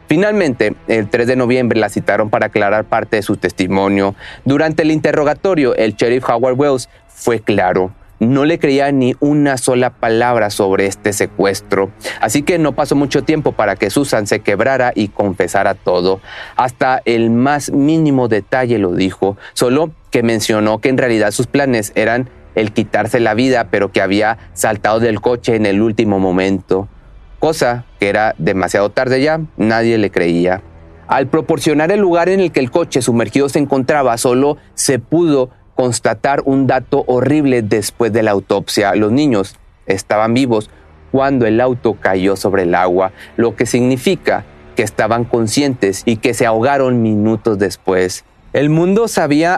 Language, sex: Spanish, male